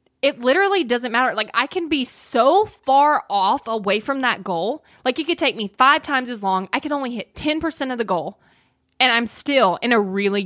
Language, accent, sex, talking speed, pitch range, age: English, American, female, 220 wpm, 205-285 Hz, 20-39